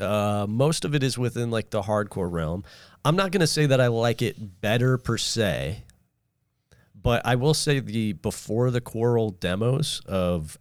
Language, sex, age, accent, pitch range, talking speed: English, male, 30-49, American, 85-115 Hz, 180 wpm